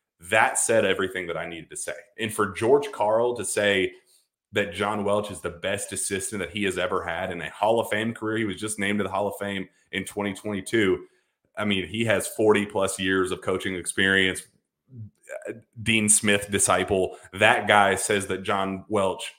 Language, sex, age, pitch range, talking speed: English, male, 30-49, 100-130 Hz, 190 wpm